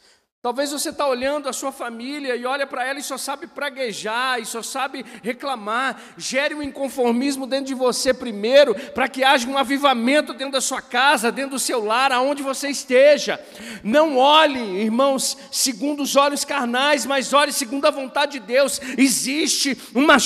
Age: 50-69